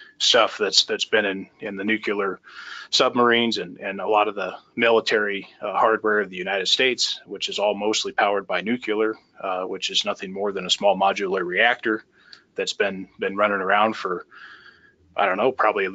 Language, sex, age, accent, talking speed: English, male, 30-49, American, 190 wpm